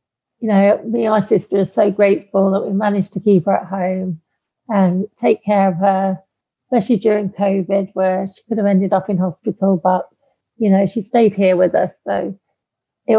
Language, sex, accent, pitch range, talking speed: English, female, British, 185-215 Hz, 185 wpm